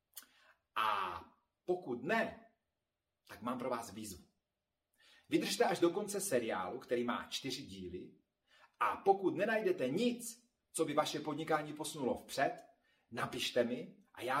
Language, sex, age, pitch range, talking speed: Slovak, male, 40-59, 130-195 Hz, 130 wpm